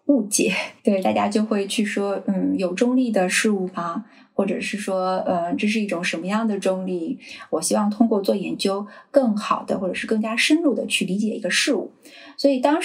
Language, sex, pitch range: Chinese, female, 185-235 Hz